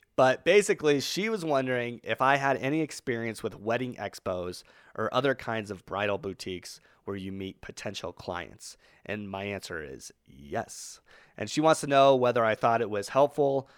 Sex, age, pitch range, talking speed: male, 30-49, 100-135 Hz, 175 wpm